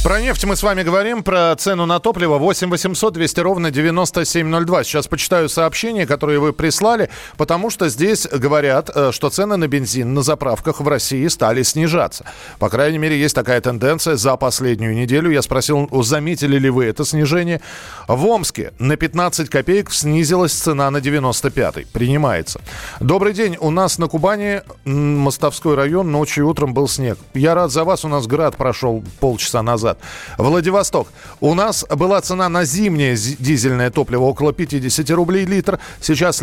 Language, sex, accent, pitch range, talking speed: Russian, male, native, 135-175 Hz, 160 wpm